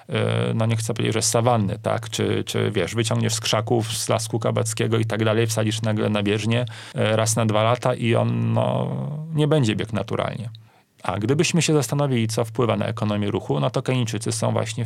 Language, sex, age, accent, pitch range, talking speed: Polish, male, 30-49, native, 110-125 Hz, 195 wpm